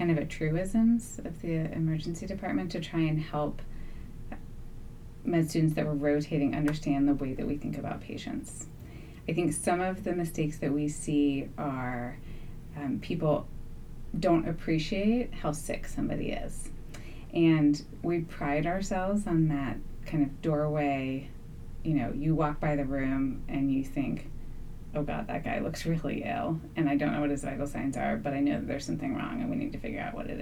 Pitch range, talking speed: 140-165 Hz, 180 wpm